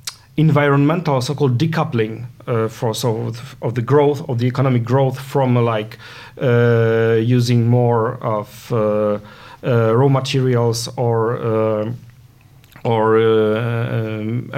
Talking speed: 120 wpm